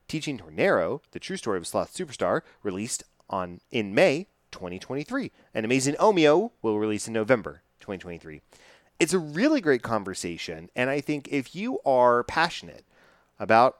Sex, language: male, English